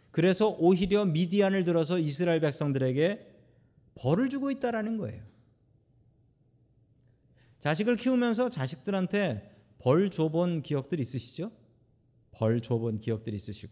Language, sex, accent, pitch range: Korean, male, native, 120-185 Hz